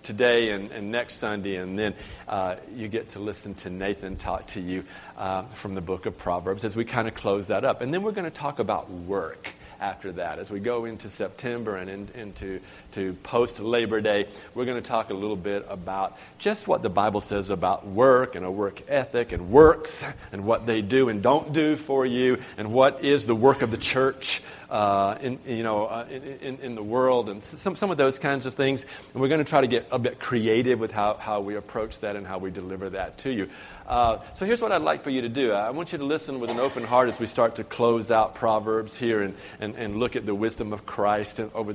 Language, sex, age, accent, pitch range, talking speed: English, male, 50-69, American, 100-125 Hz, 240 wpm